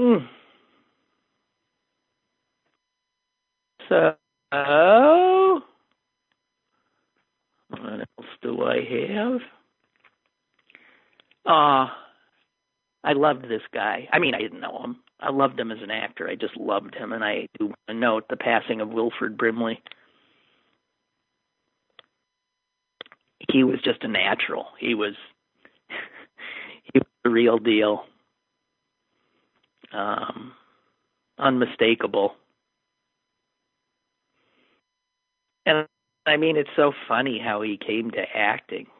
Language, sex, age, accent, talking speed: English, male, 50-69, American, 95 wpm